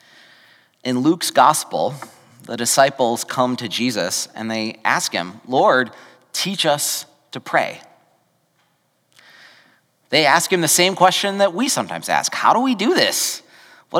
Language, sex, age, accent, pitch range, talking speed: English, male, 30-49, American, 120-160 Hz, 140 wpm